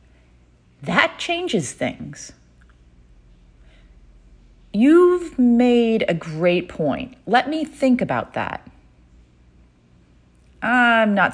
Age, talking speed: 30-49, 75 wpm